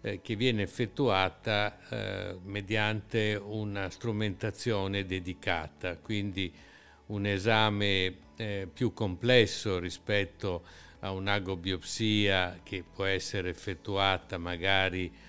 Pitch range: 95-120 Hz